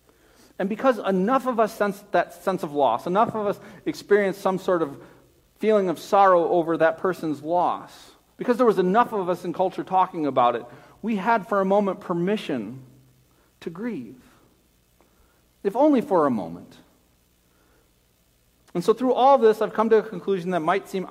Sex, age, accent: male, 40-59, American